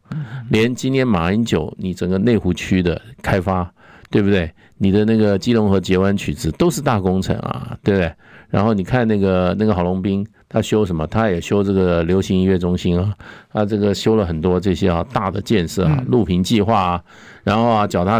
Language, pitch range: Chinese, 95-130 Hz